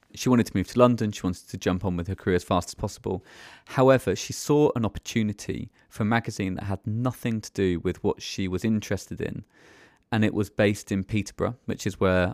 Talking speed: 225 wpm